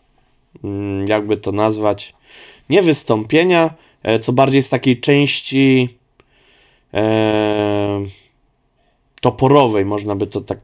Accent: native